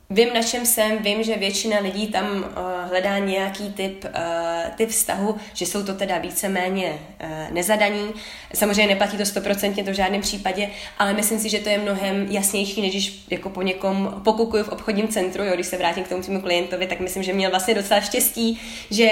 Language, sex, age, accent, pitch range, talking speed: Czech, female, 20-39, native, 190-215 Hz, 195 wpm